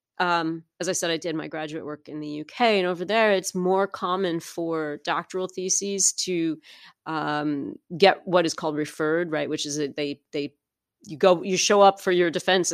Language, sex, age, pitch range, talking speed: English, female, 30-49, 165-225 Hz, 195 wpm